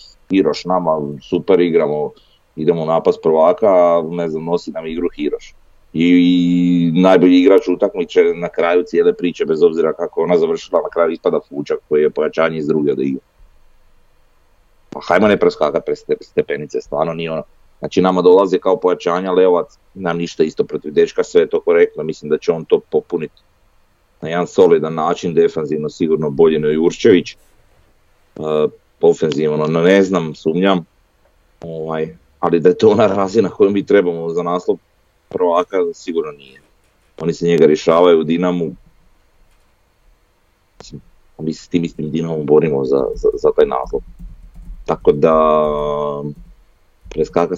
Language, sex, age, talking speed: Croatian, male, 30-49, 150 wpm